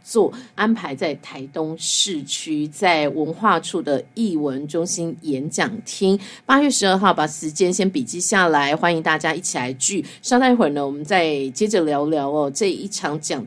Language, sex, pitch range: Chinese, female, 150-200 Hz